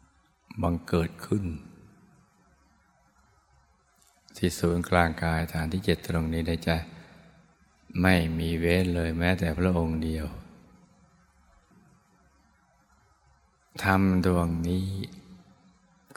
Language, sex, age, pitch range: Thai, male, 20-39, 85-95 Hz